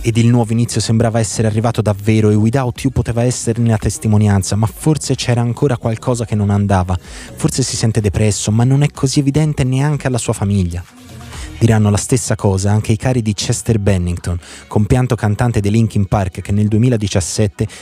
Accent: native